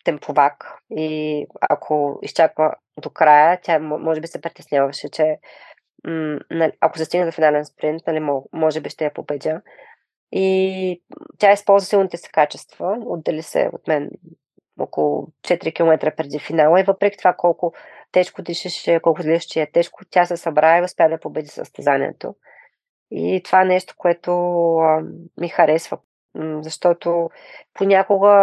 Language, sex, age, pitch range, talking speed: Bulgarian, female, 20-39, 155-185 Hz, 140 wpm